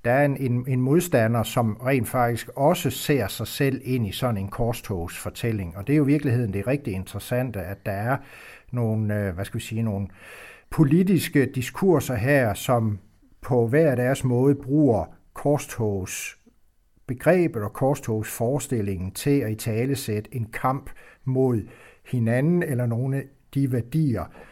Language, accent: Danish, native